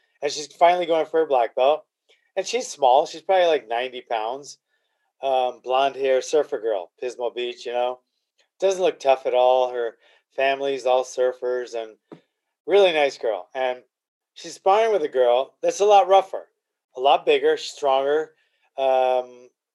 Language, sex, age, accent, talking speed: English, male, 30-49, American, 160 wpm